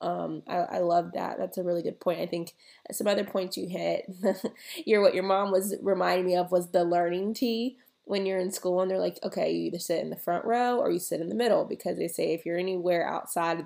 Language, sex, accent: English, female, American